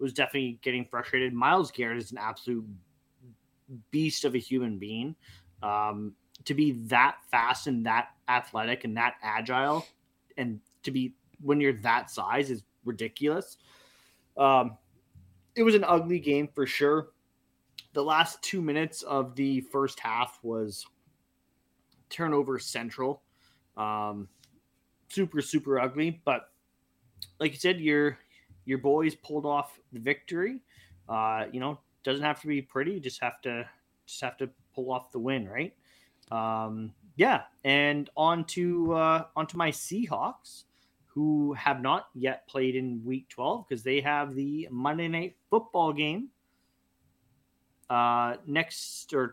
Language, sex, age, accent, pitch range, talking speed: English, male, 20-39, American, 115-150 Hz, 140 wpm